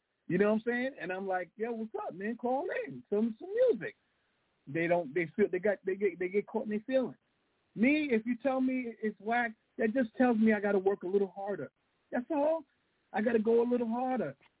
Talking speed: 235 wpm